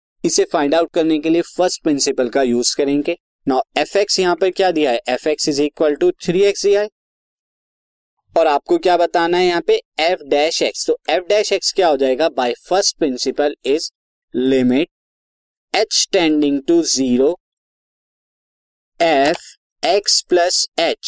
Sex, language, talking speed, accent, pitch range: male, Hindi, 155 wpm, native, 140-195 Hz